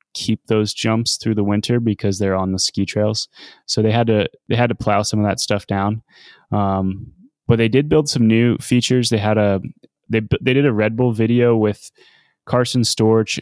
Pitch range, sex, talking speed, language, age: 100-115 Hz, male, 205 wpm, English, 20-39